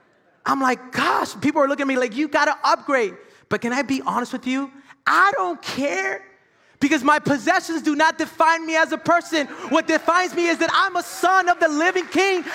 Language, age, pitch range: English, 30-49, 245-335 Hz